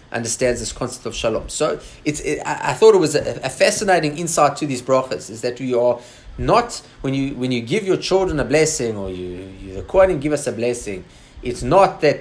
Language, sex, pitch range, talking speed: English, male, 115-150 Hz, 220 wpm